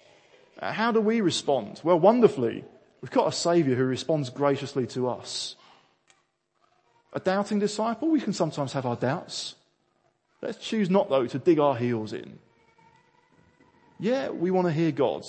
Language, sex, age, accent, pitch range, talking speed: English, male, 20-39, British, 130-180 Hz, 155 wpm